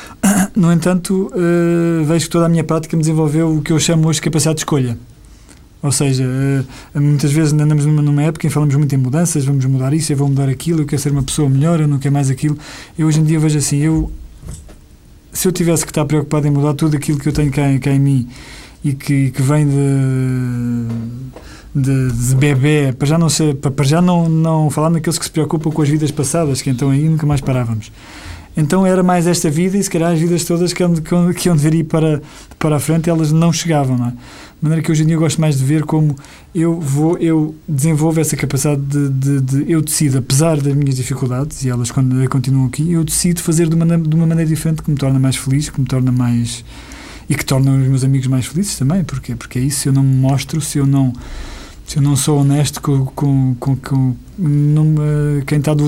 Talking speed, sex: 230 wpm, male